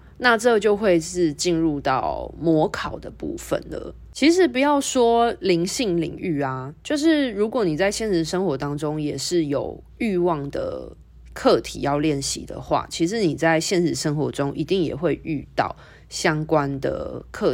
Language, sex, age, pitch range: Chinese, female, 20-39, 140-205 Hz